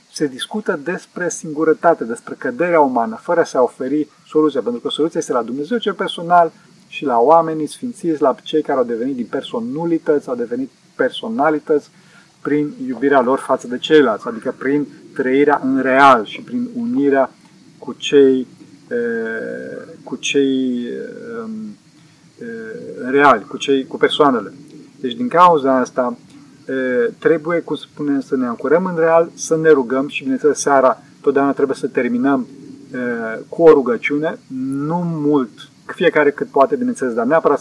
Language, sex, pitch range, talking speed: Romanian, male, 135-200 Hz, 145 wpm